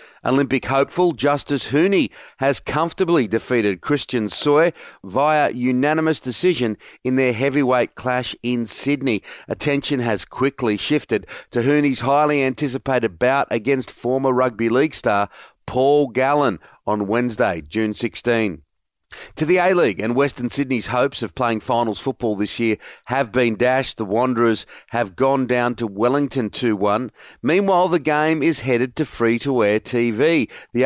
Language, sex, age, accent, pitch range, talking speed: English, male, 40-59, Australian, 115-140 Hz, 140 wpm